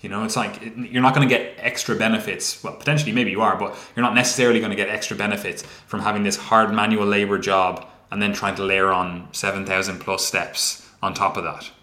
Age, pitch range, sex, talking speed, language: 20-39, 100-125 Hz, male, 235 wpm, English